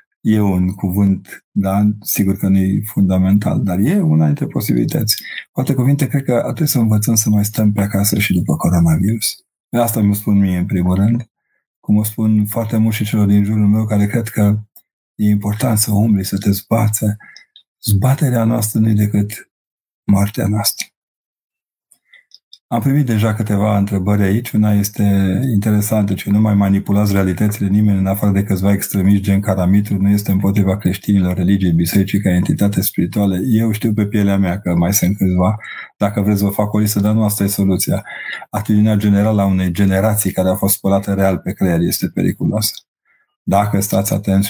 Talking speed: 175 wpm